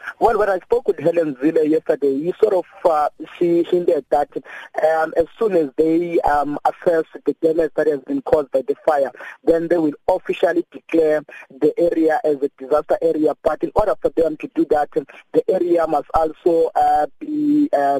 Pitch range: 150-170 Hz